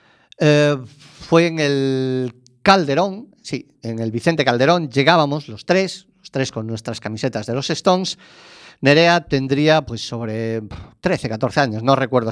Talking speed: 145 wpm